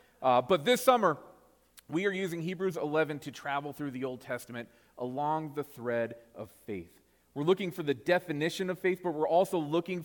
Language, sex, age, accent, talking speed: English, male, 40-59, American, 185 wpm